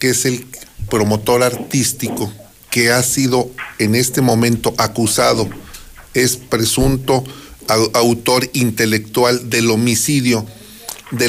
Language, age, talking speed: Spanish, 40-59, 100 wpm